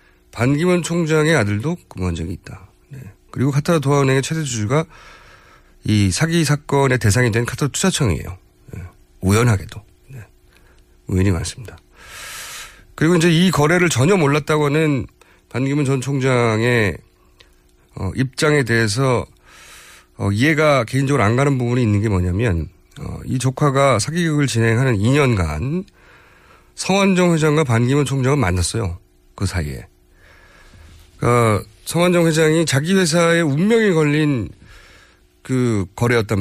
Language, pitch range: Korean, 95-145 Hz